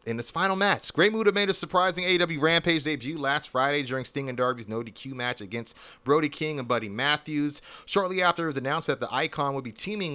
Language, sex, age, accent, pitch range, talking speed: English, male, 30-49, American, 115-145 Hz, 225 wpm